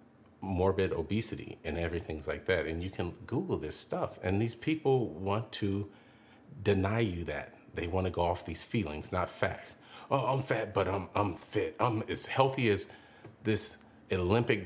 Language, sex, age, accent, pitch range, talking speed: English, male, 40-59, American, 80-105 Hz, 170 wpm